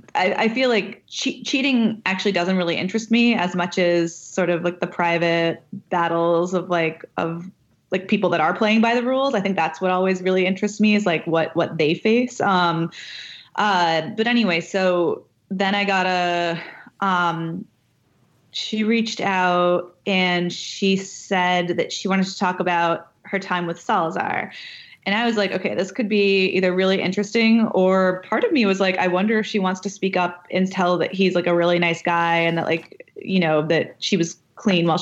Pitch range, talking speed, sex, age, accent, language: 175-205 Hz, 195 wpm, female, 20-39, American, English